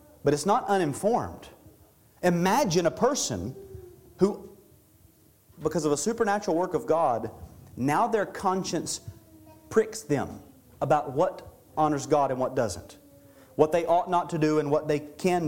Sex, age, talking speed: male, 40-59, 145 wpm